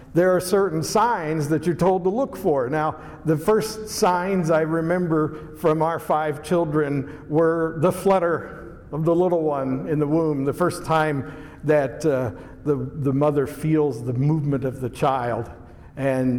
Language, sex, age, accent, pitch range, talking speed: English, male, 60-79, American, 140-165 Hz, 165 wpm